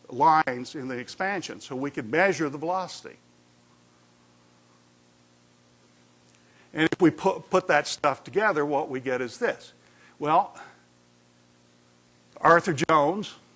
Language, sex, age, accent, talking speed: English, male, 60-79, American, 115 wpm